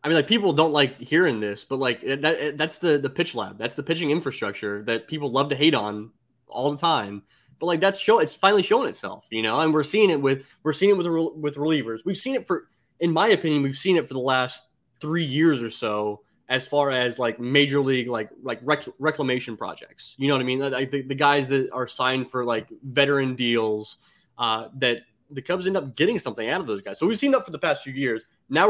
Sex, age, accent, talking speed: male, 20-39, American, 235 wpm